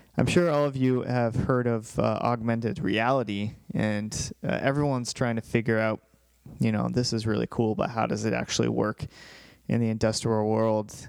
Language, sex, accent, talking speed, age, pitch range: English, male, American, 180 wpm, 20-39, 110-130 Hz